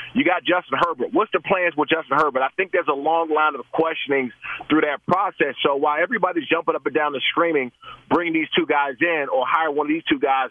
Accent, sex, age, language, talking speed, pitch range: American, male, 30-49, English, 240 wpm, 150-170 Hz